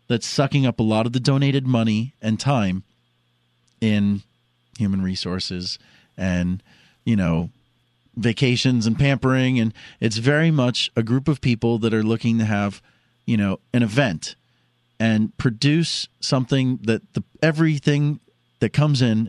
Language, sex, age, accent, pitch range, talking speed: English, male, 40-59, American, 100-135 Hz, 145 wpm